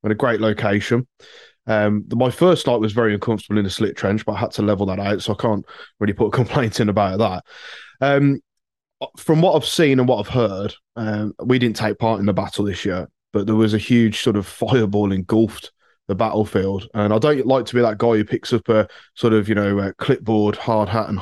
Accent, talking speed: British, 230 wpm